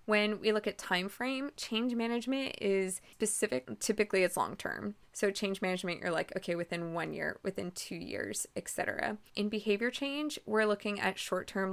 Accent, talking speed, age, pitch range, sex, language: American, 175 wpm, 20-39, 175-215 Hz, female, English